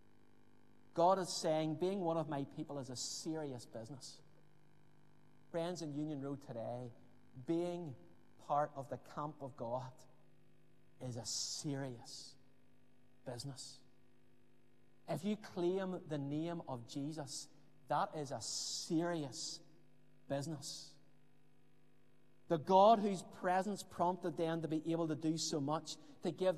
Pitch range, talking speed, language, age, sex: 140-180 Hz, 125 wpm, English, 30-49, male